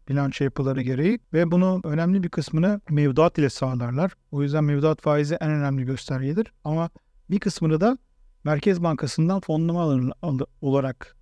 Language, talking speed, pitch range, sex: Turkish, 140 wpm, 145-195 Hz, male